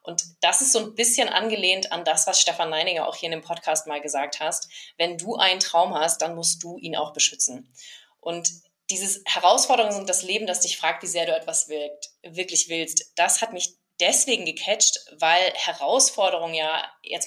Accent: German